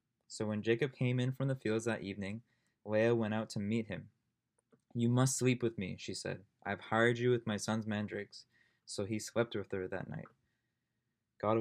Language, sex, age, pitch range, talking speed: English, male, 20-39, 105-120 Hz, 195 wpm